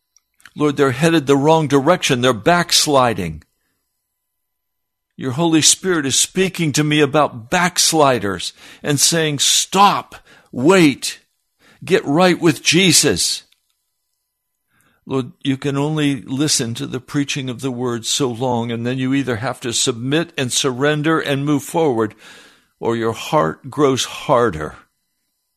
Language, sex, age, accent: English, male, 60-79, American